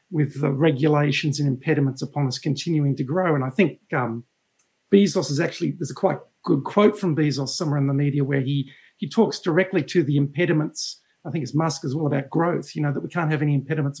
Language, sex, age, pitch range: English, male, 50-69, 145-175 Hz